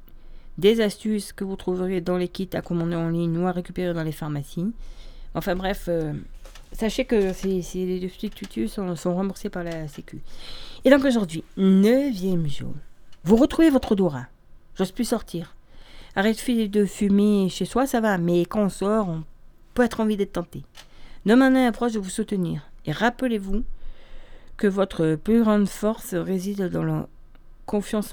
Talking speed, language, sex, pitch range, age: 170 wpm, French, female, 165-215 Hz, 40-59